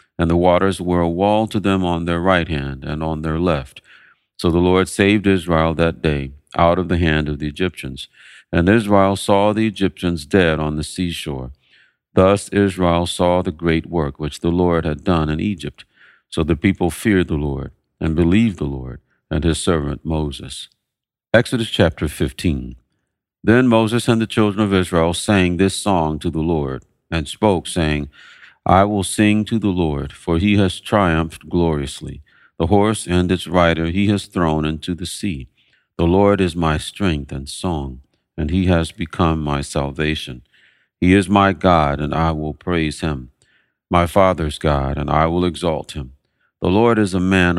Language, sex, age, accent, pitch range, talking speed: English, male, 50-69, American, 80-95 Hz, 180 wpm